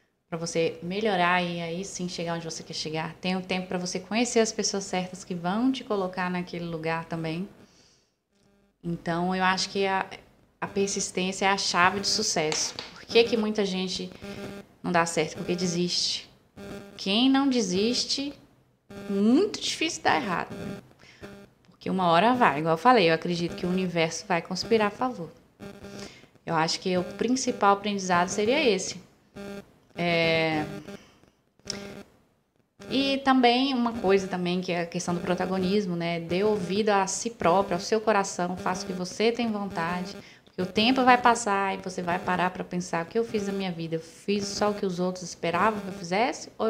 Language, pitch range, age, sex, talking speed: Portuguese, 175-210 Hz, 20-39, female, 175 wpm